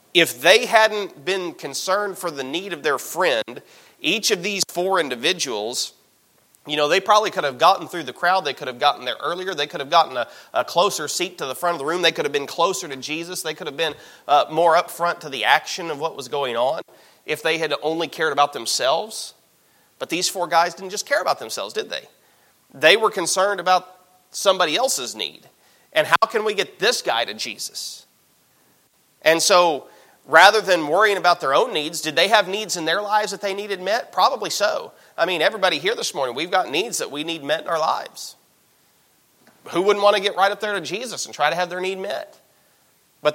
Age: 30-49